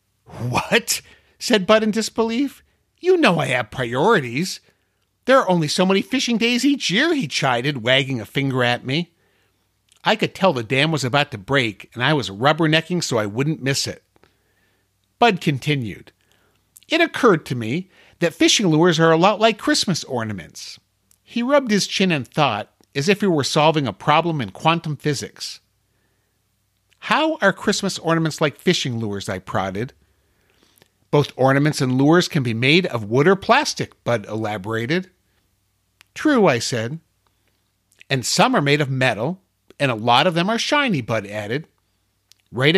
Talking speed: 165 wpm